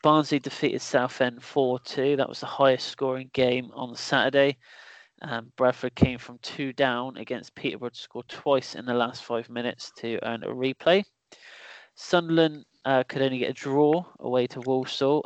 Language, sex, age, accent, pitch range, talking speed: English, male, 20-39, British, 120-140 Hz, 165 wpm